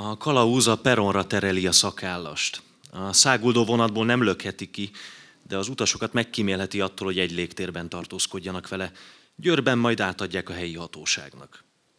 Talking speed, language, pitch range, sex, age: 140 wpm, Hungarian, 90-110 Hz, male, 30-49